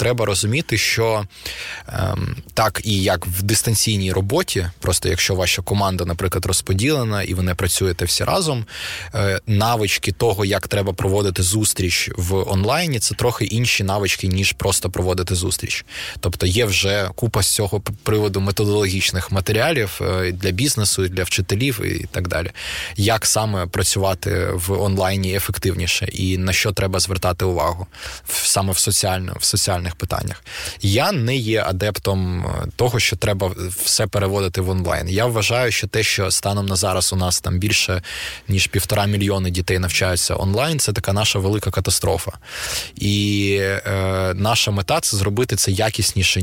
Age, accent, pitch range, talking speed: 20-39, native, 95-105 Hz, 145 wpm